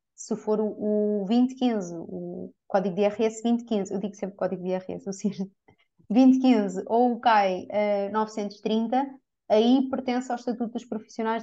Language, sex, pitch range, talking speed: Portuguese, female, 200-260 Hz, 145 wpm